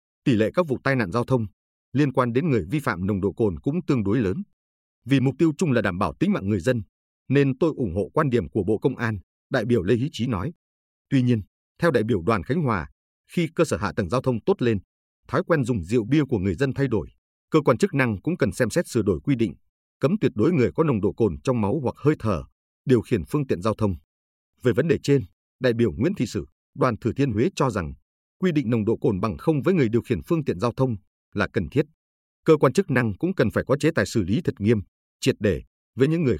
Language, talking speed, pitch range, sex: Vietnamese, 260 wpm, 95-140 Hz, male